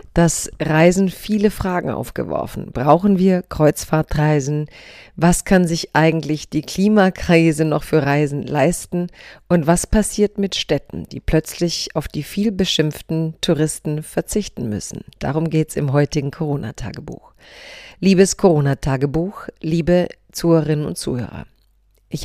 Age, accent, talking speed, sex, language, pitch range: 40-59, German, 120 wpm, female, German, 150-185 Hz